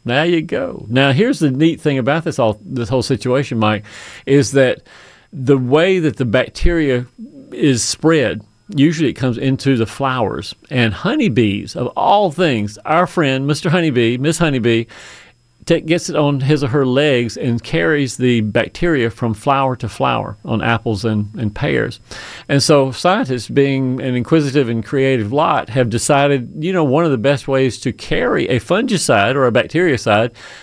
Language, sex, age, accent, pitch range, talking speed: English, male, 40-59, American, 115-140 Hz, 170 wpm